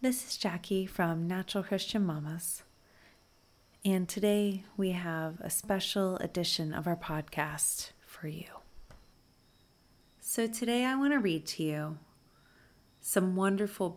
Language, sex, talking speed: English, female, 125 wpm